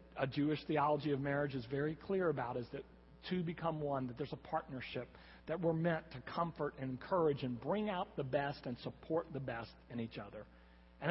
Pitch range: 110-165 Hz